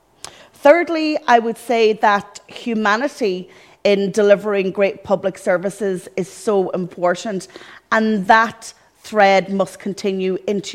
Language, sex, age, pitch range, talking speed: English, female, 30-49, 190-230 Hz, 110 wpm